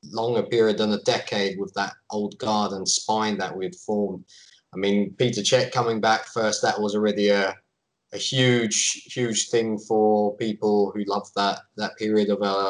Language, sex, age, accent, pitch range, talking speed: English, male, 20-39, British, 110-180 Hz, 180 wpm